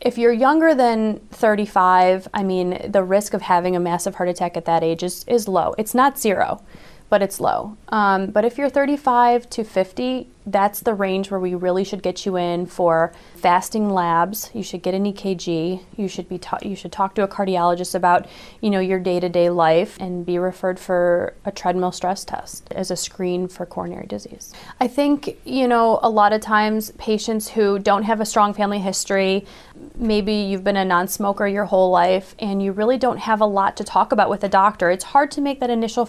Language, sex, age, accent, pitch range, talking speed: English, female, 30-49, American, 185-220 Hz, 210 wpm